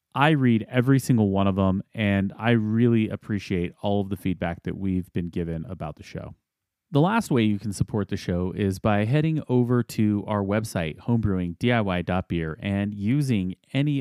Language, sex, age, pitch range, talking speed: English, male, 30-49, 95-125 Hz, 175 wpm